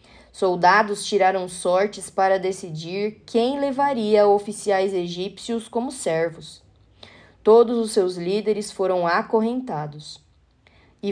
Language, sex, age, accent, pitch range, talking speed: Portuguese, female, 20-39, Brazilian, 175-225 Hz, 95 wpm